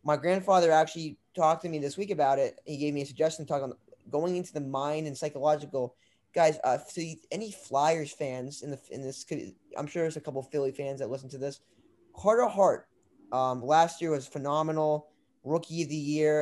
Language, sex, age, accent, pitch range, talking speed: English, male, 20-39, American, 135-165 Hz, 210 wpm